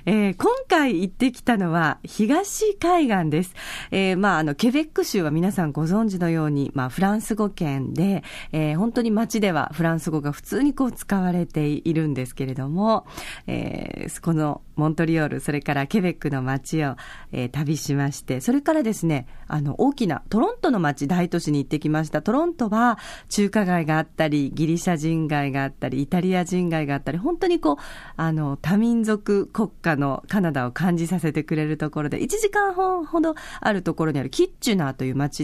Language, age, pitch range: Japanese, 40-59, 155-235 Hz